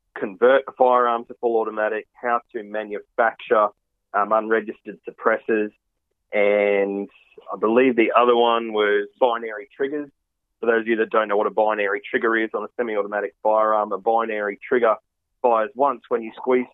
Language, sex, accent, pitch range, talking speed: English, male, Australian, 105-125 Hz, 160 wpm